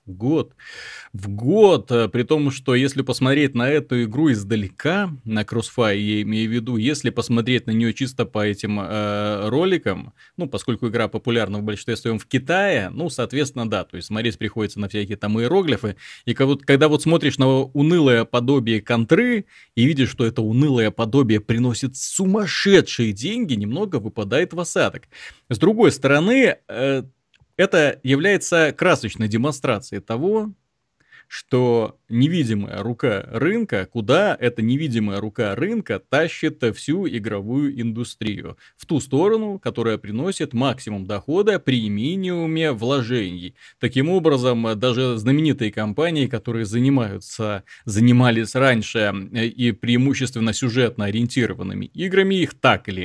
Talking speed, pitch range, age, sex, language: 135 wpm, 110-150 Hz, 20-39, male, Russian